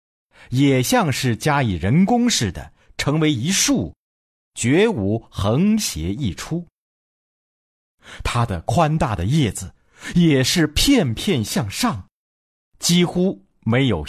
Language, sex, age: Chinese, male, 50-69